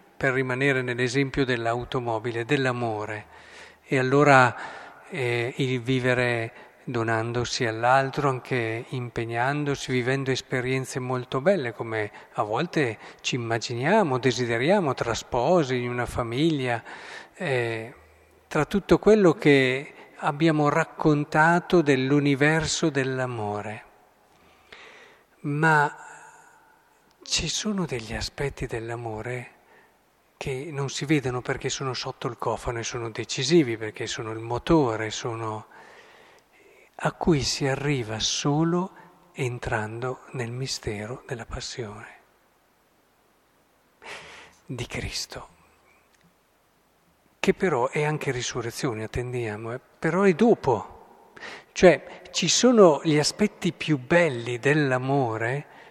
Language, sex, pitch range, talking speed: Italian, male, 120-155 Hz, 95 wpm